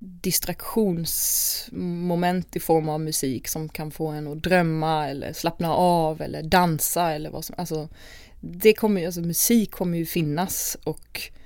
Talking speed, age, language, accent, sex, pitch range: 145 wpm, 20-39, Swedish, native, female, 155-195 Hz